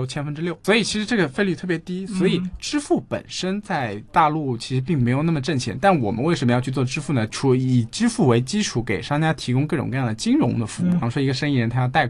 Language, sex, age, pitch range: Chinese, male, 20-39, 120-165 Hz